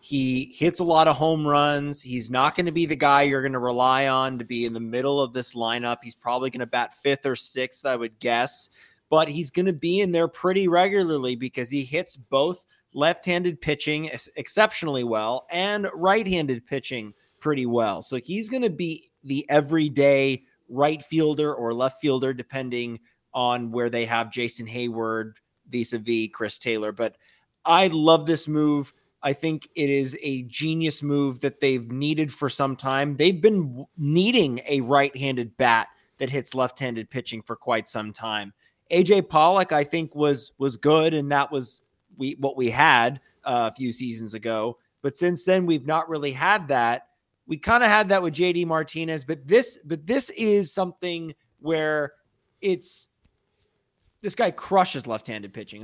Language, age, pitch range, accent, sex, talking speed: English, 30-49, 125-160 Hz, American, male, 175 wpm